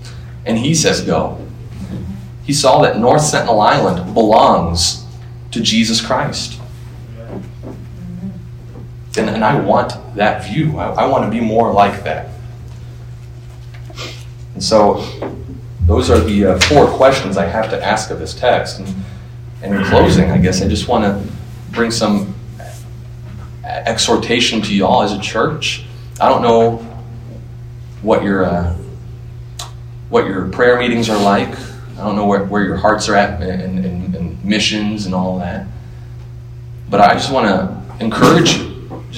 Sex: male